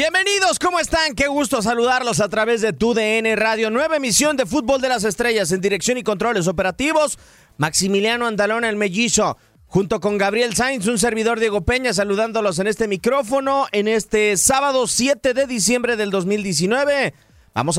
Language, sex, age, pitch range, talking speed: Spanish, male, 30-49, 190-240 Hz, 165 wpm